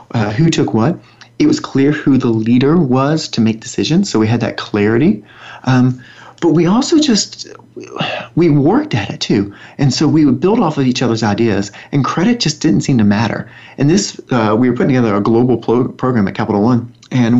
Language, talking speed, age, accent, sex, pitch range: English, 205 wpm, 40-59, American, male, 115-150 Hz